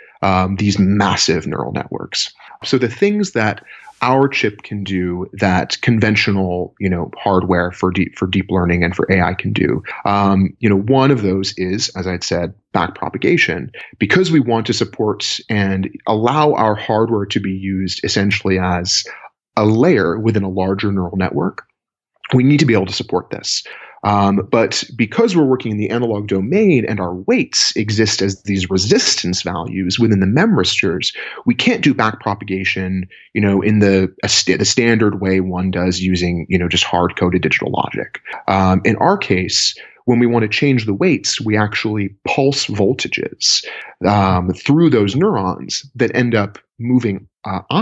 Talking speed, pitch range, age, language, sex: 170 wpm, 95-115 Hz, 30-49, English, male